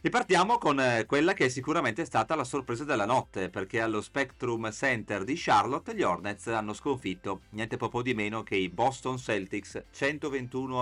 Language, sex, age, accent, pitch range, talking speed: Italian, male, 40-59, native, 95-125 Hz, 170 wpm